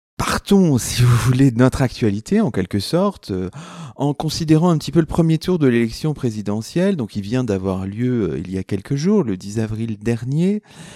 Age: 40-59